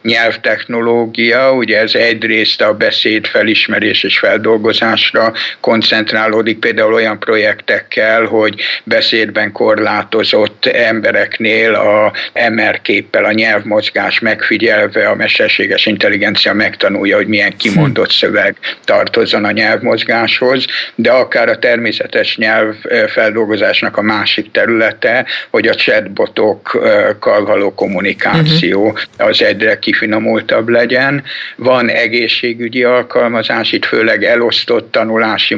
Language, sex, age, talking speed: Hungarian, male, 60-79, 100 wpm